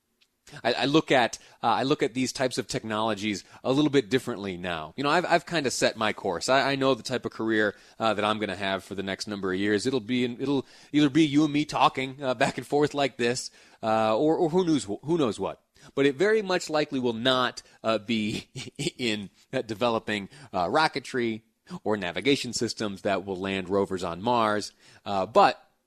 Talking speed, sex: 215 wpm, male